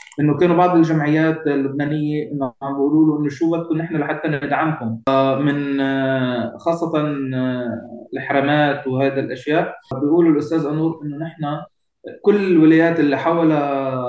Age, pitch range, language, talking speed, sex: 20-39, 145-165 Hz, Turkish, 115 wpm, male